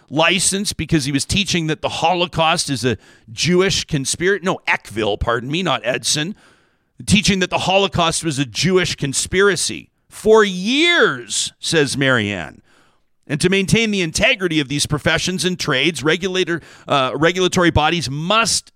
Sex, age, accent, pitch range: male, 50-69, American, 140-185 Hz